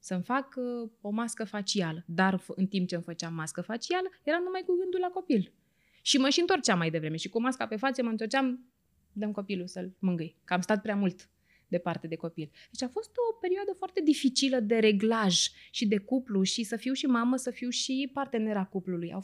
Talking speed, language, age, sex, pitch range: 205 wpm, Romanian, 20-39, female, 185-245 Hz